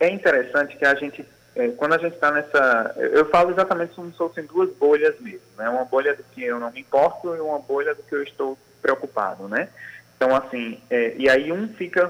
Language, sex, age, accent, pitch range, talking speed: Portuguese, male, 20-39, Brazilian, 125-170 Hz, 220 wpm